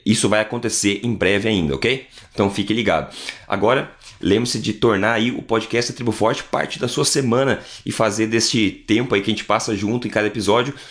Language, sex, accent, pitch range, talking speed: Portuguese, male, Brazilian, 105-115 Hz, 200 wpm